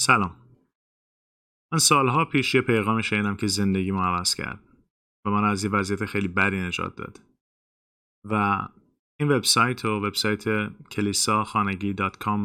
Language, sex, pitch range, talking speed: Persian, male, 95-115 Hz, 125 wpm